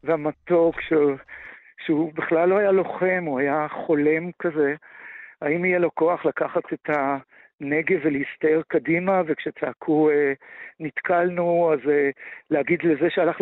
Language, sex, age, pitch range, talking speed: Hebrew, male, 60-79, 145-175 Hz, 115 wpm